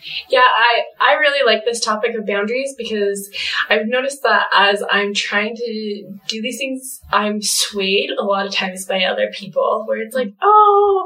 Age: 20-39